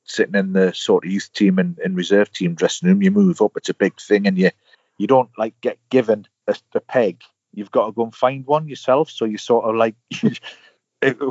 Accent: British